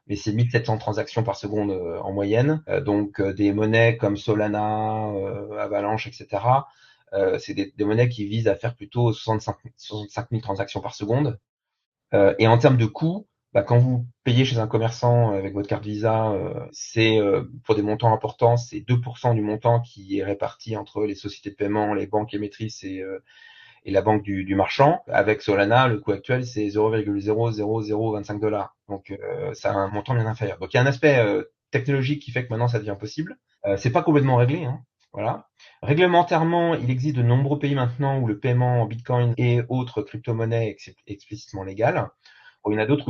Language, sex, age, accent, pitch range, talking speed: French, male, 30-49, French, 105-125 Hz, 205 wpm